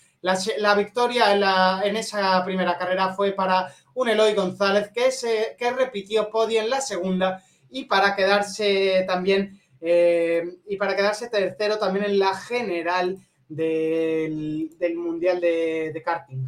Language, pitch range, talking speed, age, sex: Spanish, 180-215 Hz, 150 wpm, 30-49, male